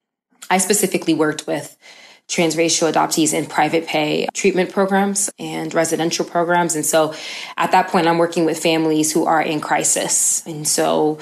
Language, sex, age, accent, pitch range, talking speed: English, female, 20-39, American, 155-180 Hz, 155 wpm